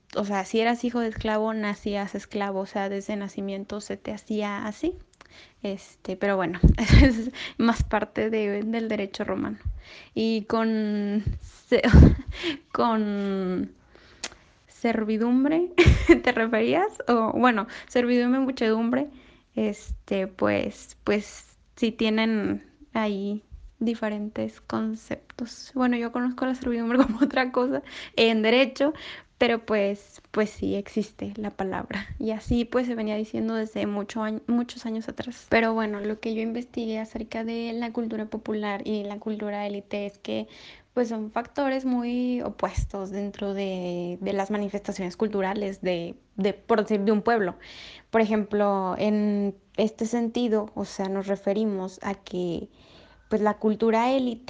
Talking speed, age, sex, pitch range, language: 140 wpm, 20-39, female, 200-235 Hz, Spanish